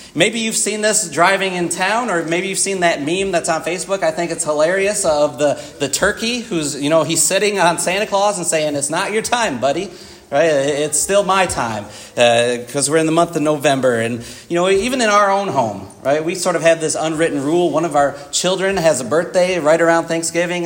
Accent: American